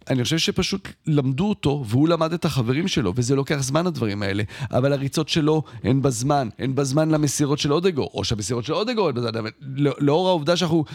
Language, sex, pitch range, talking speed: Hebrew, male, 115-150 Hz, 180 wpm